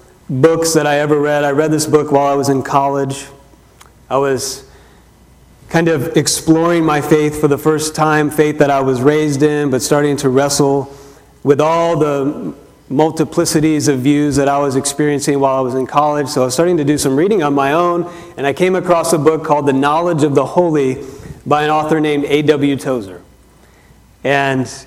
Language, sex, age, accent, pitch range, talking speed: English, male, 40-59, American, 135-160 Hz, 195 wpm